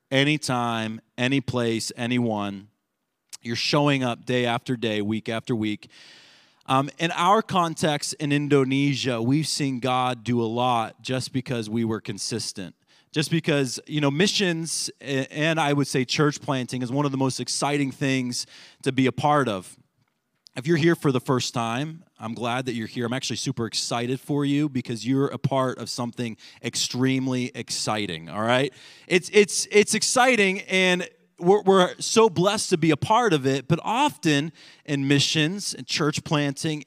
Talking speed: 170 wpm